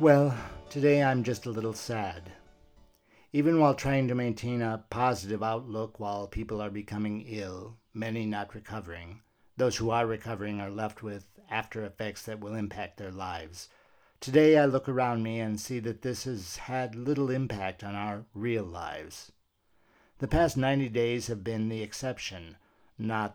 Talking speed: 160 wpm